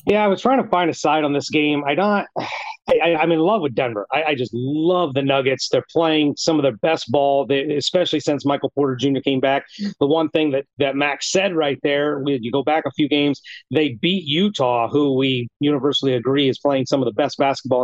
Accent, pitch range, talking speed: American, 140-175 Hz, 230 wpm